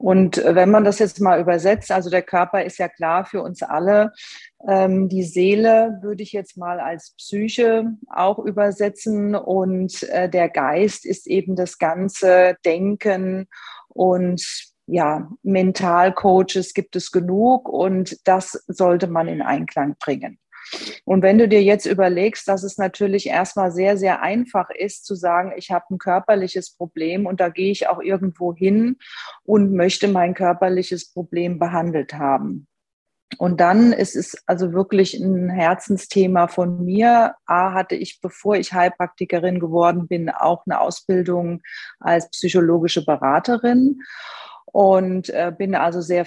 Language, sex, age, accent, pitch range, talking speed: German, female, 40-59, German, 180-200 Hz, 145 wpm